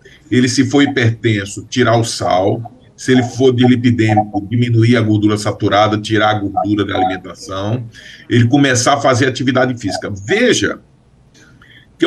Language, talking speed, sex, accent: Portuguese, 140 wpm, male, Brazilian